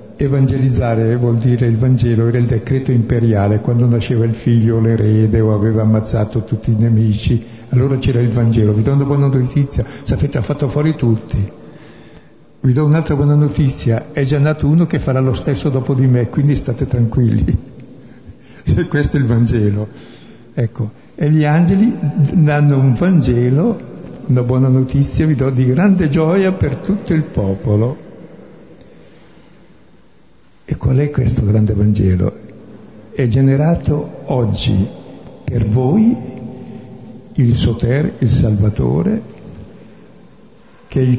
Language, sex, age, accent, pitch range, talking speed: Italian, male, 60-79, native, 110-140 Hz, 135 wpm